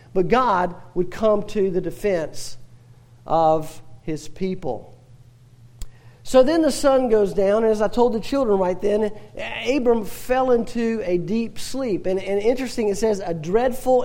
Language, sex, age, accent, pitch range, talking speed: English, male, 50-69, American, 175-235 Hz, 160 wpm